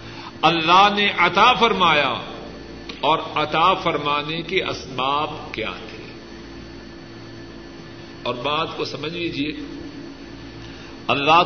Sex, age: male, 50-69